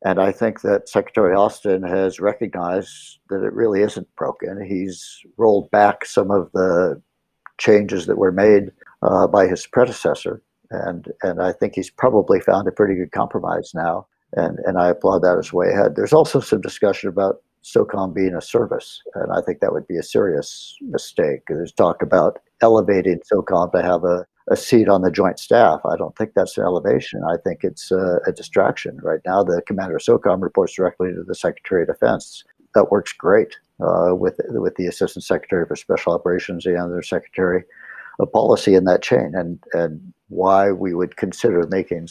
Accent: American